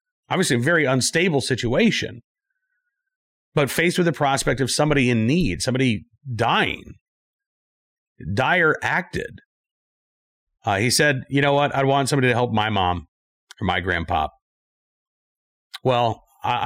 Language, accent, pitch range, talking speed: English, American, 95-135 Hz, 130 wpm